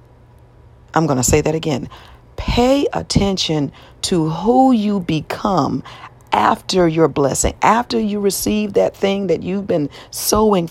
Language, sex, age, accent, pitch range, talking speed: English, female, 40-59, American, 150-210 Hz, 135 wpm